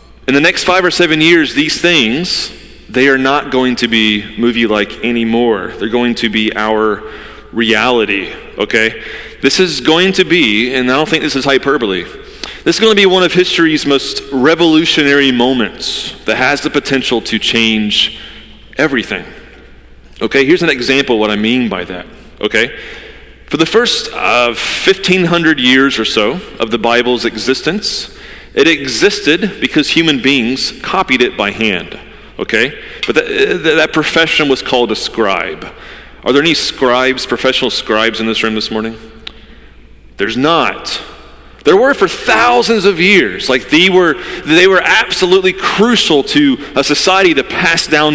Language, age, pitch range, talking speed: English, 30-49, 120-180 Hz, 155 wpm